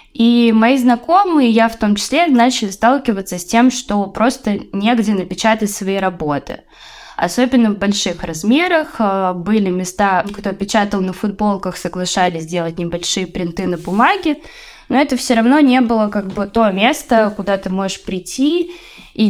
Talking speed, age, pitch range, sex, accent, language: 150 wpm, 20-39, 185-240 Hz, female, native, Russian